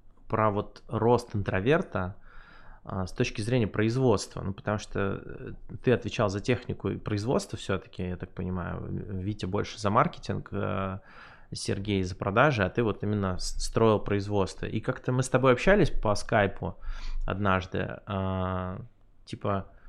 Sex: male